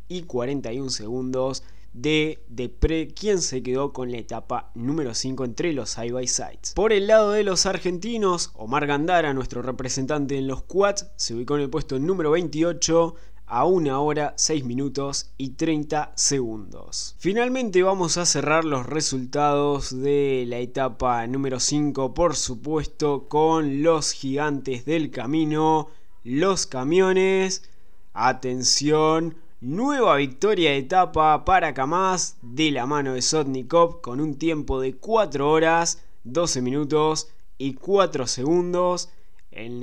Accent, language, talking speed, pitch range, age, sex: Argentinian, Spanish, 135 wpm, 130-170 Hz, 20-39, male